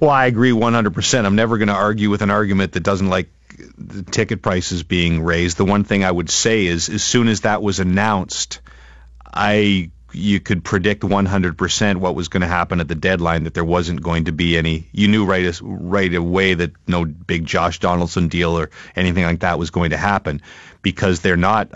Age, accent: 40-59, American